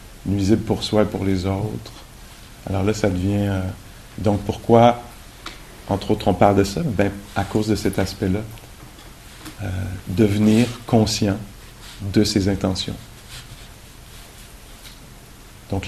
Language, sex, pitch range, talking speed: English, male, 95-110 Hz, 125 wpm